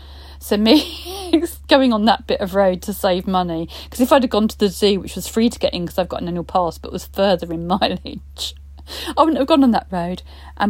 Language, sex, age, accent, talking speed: English, female, 40-59, British, 250 wpm